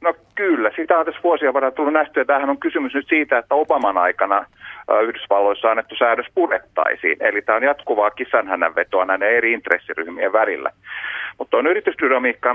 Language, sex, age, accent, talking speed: Finnish, male, 40-59, native, 160 wpm